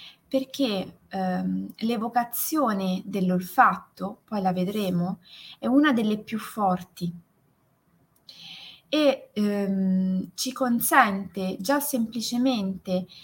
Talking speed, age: 80 wpm, 20-39